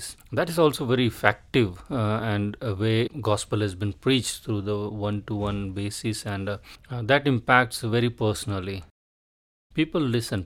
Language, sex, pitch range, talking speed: English, male, 105-130 Hz, 145 wpm